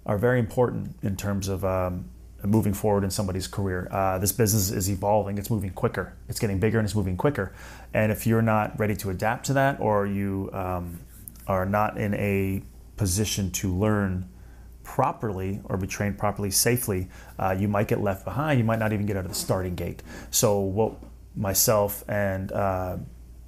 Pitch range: 95-110 Hz